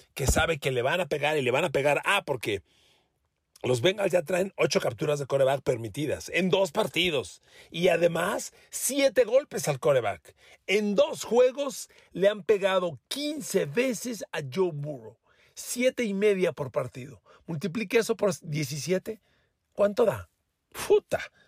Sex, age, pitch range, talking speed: male, 40-59, 160-230 Hz, 155 wpm